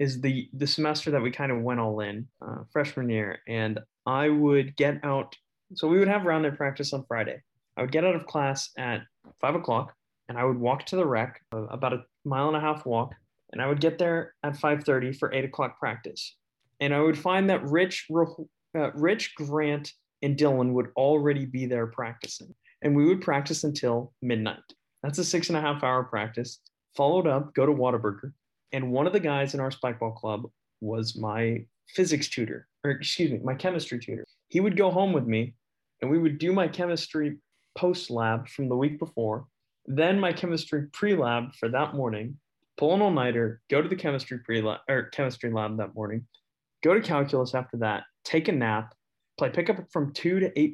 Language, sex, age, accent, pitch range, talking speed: English, male, 20-39, American, 120-155 Hz, 200 wpm